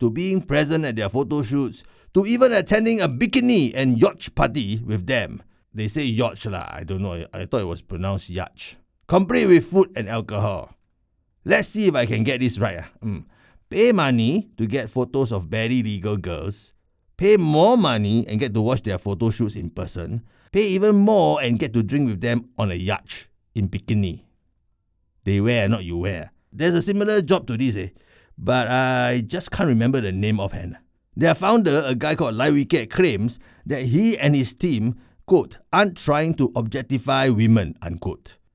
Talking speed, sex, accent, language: 185 wpm, male, Malaysian, English